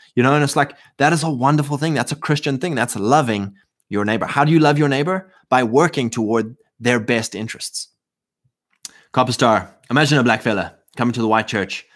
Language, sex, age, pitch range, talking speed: English, male, 20-39, 100-135 Hz, 205 wpm